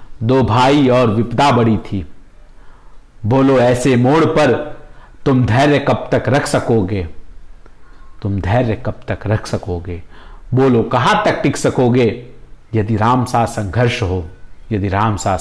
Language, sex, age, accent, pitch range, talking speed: Hindi, male, 50-69, native, 110-145 Hz, 135 wpm